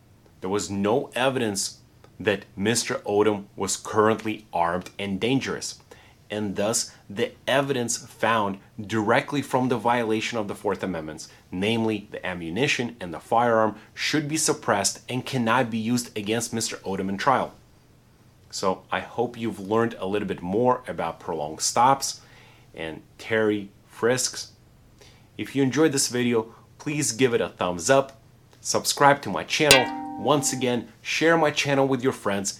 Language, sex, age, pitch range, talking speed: English, male, 30-49, 105-130 Hz, 150 wpm